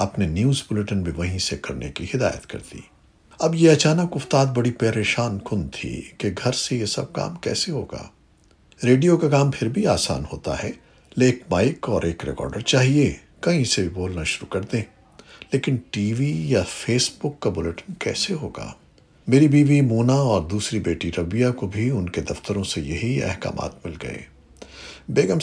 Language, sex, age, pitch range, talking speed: Urdu, male, 60-79, 90-125 Hz, 180 wpm